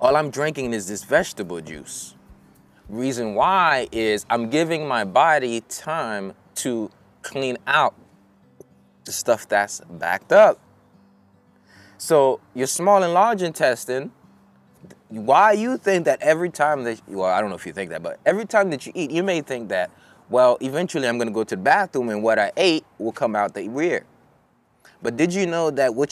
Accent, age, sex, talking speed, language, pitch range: American, 20-39, male, 175 wpm, English, 110-175 Hz